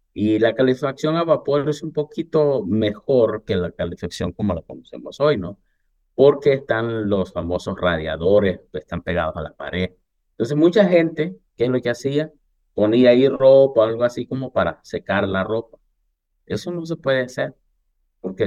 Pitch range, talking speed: 90-135 Hz, 170 wpm